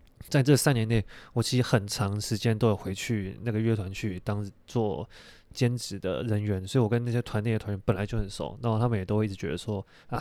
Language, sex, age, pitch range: Chinese, male, 20-39, 100-120 Hz